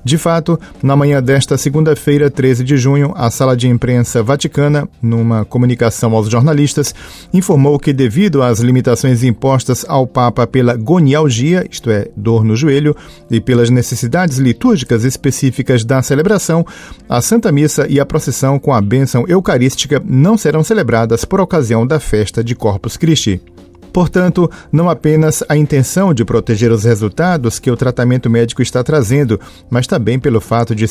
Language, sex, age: Portuguese, male, 40-59